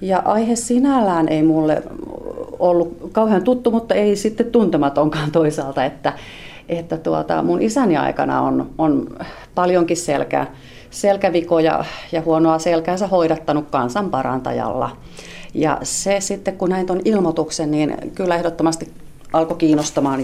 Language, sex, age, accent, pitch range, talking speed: Finnish, female, 40-59, native, 140-185 Hz, 120 wpm